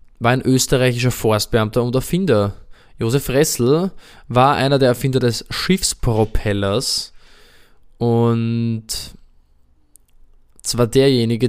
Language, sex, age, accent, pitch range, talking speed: German, male, 20-39, German, 115-135 Hz, 90 wpm